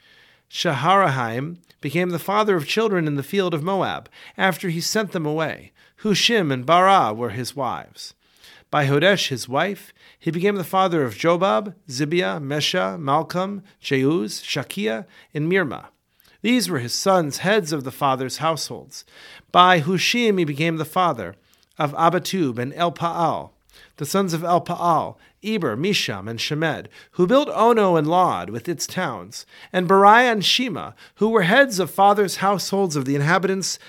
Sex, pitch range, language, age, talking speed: male, 150-195 Hz, English, 40-59, 155 wpm